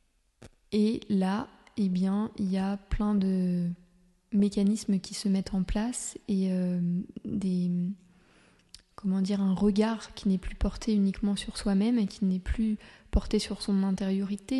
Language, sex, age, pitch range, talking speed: French, female, 20-39, 195-215 Hz, 150 wpm